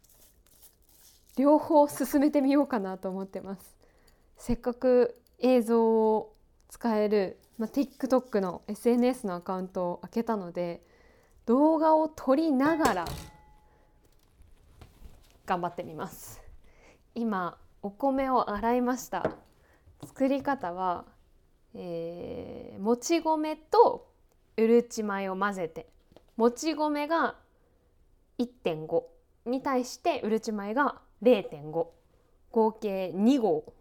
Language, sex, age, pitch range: Japanese, female, 20-39, 175-250 Hz